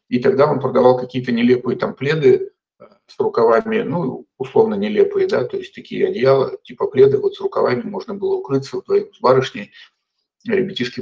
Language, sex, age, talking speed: Russian, male, 50-69, 170 wpm